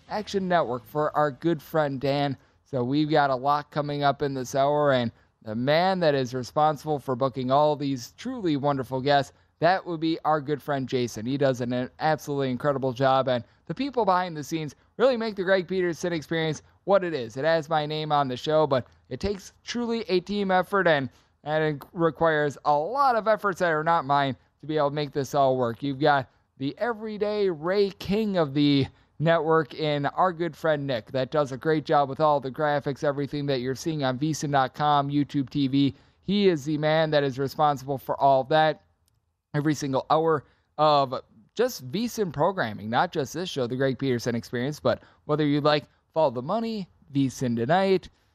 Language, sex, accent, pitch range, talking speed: English, male, American, 135-165 Hz, 195 wpm